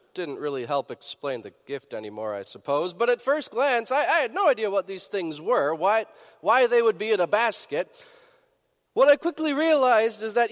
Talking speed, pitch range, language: 205 wpm, 185-310 Hz, English